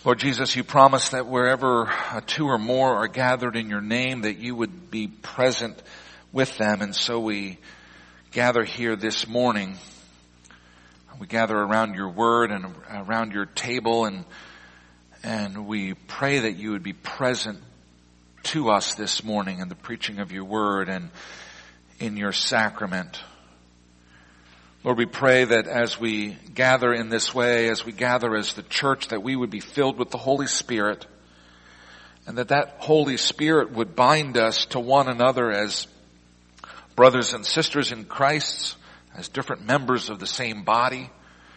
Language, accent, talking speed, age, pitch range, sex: English, American, 155 wpm, 50-69, 90-125 Hz, male